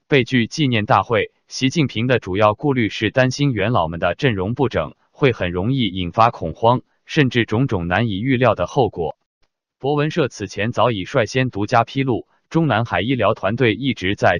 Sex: male